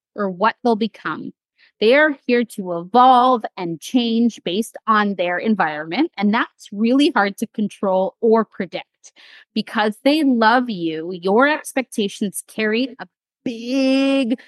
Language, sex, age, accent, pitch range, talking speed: English, female, 30-49, American, 195-255 Hz, 130 wpm